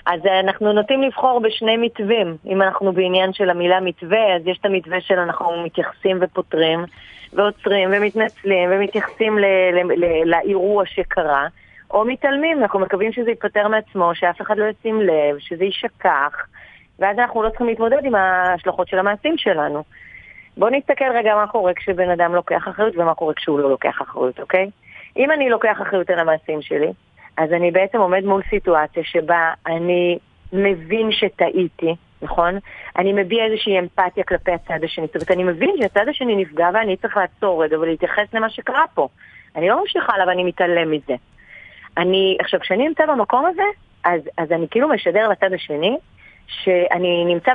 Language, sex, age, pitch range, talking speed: Hebrew, female, 30-49, 175-215 Hz, 140 wpm